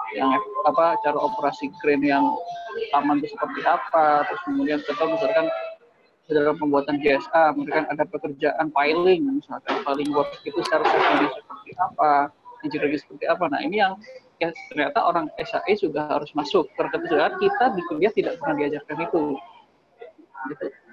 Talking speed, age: 140 wpm, 20-39